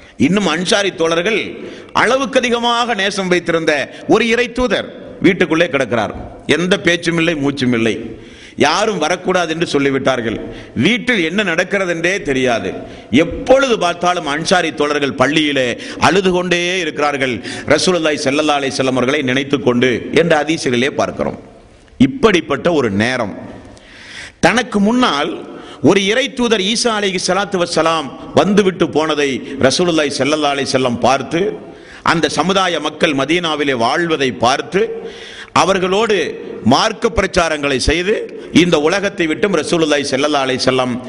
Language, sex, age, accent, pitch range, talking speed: Tamil, male, 50-69, native, 135-200 Hz, 90 wpm